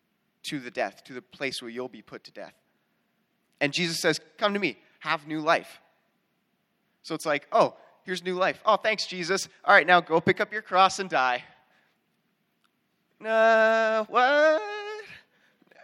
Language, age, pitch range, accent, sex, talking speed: English, 20-39, 160-220 Hz, American, male, 165 wpm